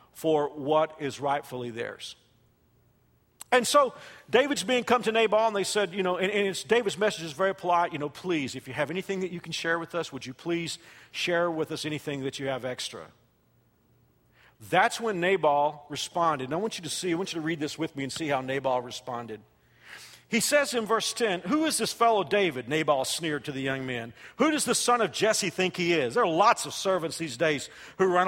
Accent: American